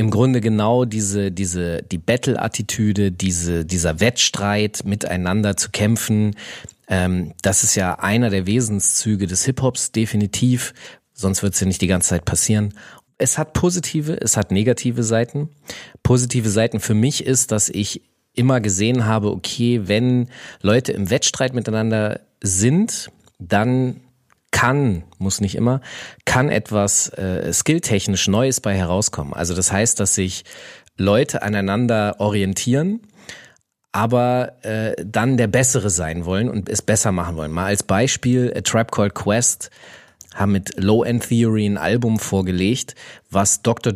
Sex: male